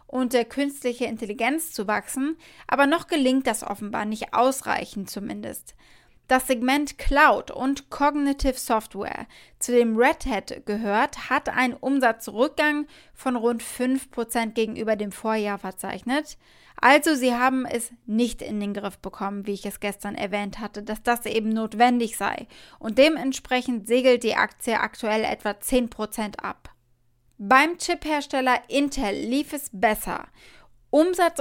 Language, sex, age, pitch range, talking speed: German, female, 20-39, 215-270 Hz, 135 wpm